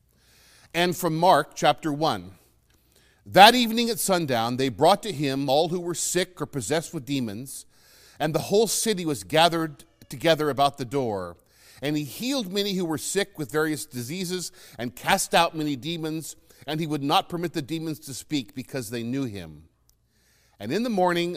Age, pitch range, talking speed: 50-69, 115-170 Hz, 175 wpm